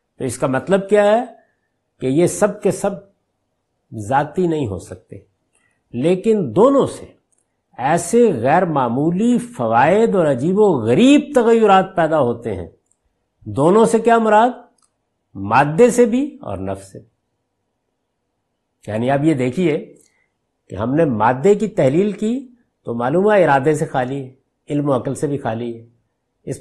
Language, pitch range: Urdu, 125-215 Hz